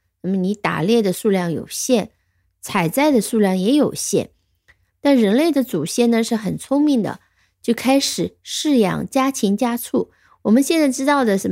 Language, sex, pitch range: Chinese, female, 185-275 Hz